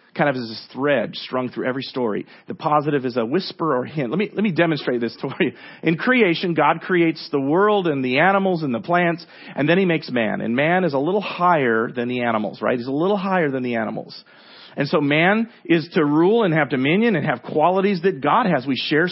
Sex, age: male, 40-59